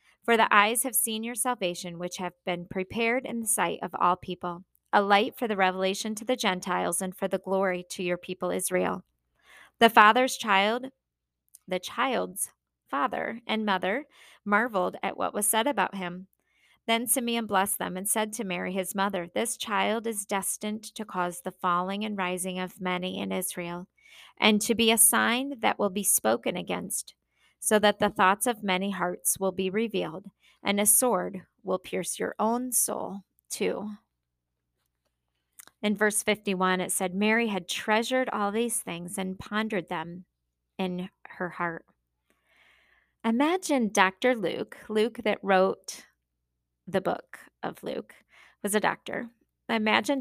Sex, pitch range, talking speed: female, 180-225 Hz, 160 wpm